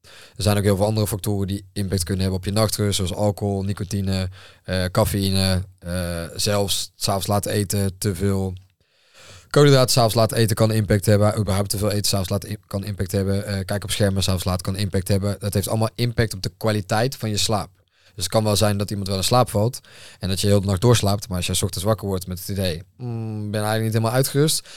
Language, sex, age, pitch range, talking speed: Dutch, male, 20-39, 95-110 Hz, 235 wpm